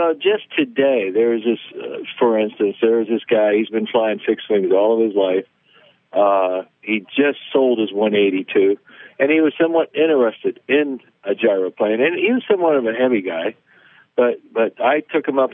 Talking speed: 185 wpm